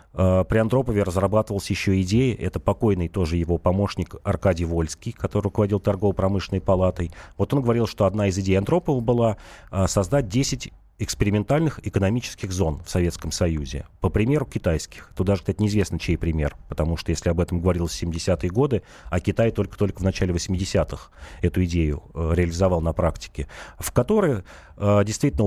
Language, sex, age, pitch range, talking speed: Russian, male, 30-49, 85-110 Hz, 160 wpm